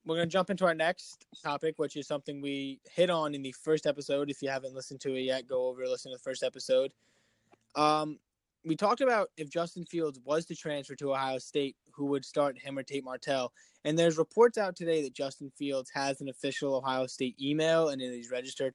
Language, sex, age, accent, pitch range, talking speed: English, male, 20-39, American, 135-165 Hz, 225 wpm